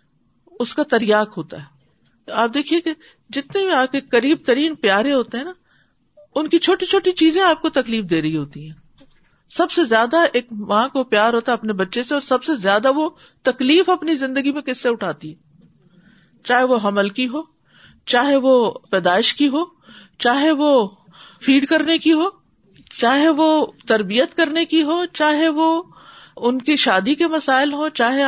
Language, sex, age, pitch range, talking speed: Urdu, female, 50-69, 210-310 Hz, 180 wpm